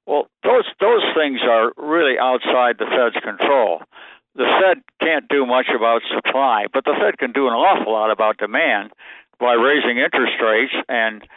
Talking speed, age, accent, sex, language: 170 wpm, 60-79, American, male, English